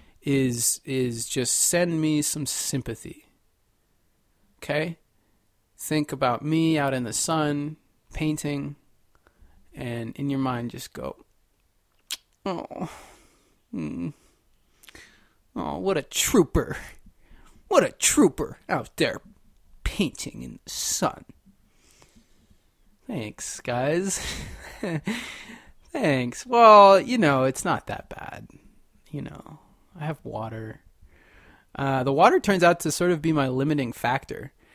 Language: English